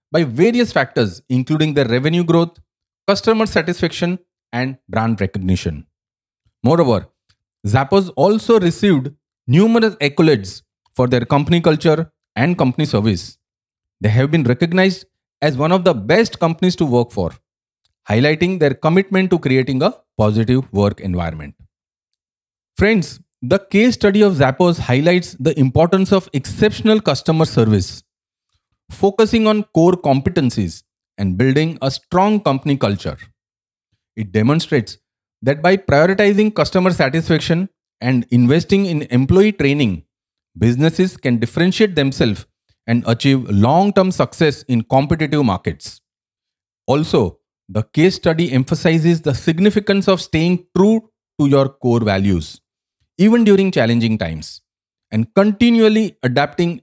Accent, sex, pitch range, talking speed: Indian, male, 120-180 Hz, 120 wpm